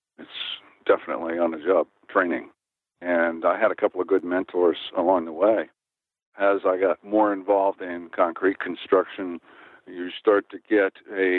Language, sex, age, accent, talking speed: English, male, 60-79, American, 150 wpm